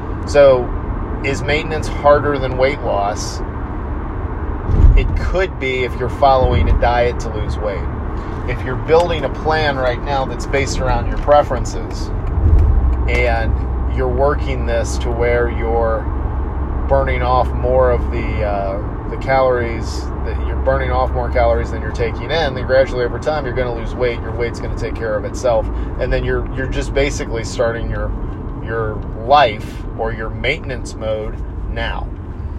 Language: English